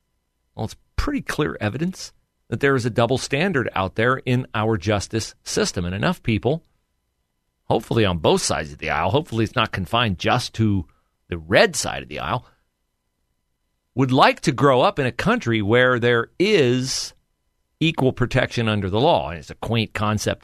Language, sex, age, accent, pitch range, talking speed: English, male, 40-59, American, 90-130 Hz, 175 wpm